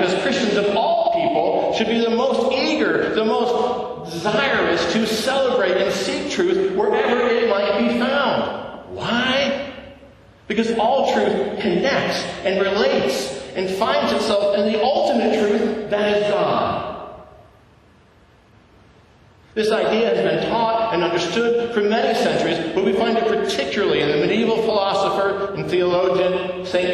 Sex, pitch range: male, 175-230 Hz